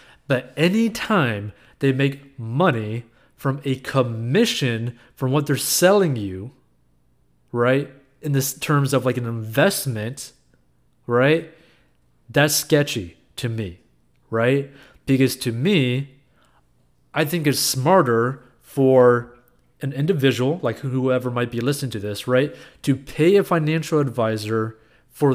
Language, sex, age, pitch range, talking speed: English, male, 20-39, 125-155 Hz, 125 wpm